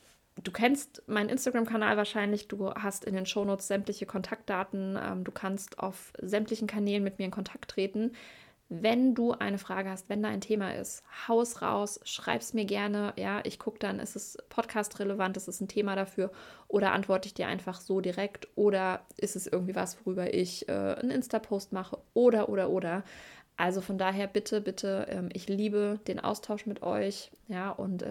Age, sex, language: 20-39, female, German